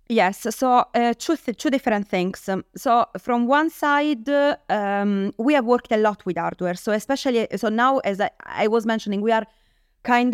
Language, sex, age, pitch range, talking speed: English, female, 30-49, 195-230 Hz, 190 wpm